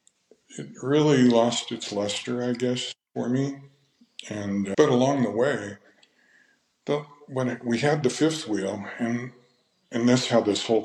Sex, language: male, English